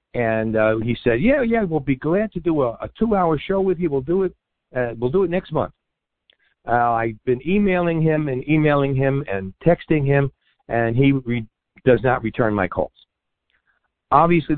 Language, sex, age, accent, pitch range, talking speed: English, male, 50-69, American, 115-155 Hz, 190 wpm